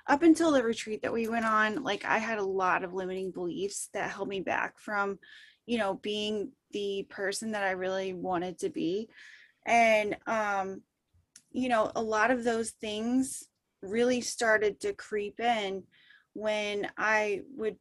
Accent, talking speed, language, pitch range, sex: American, 165 wpm, English, 200-245 Hz, female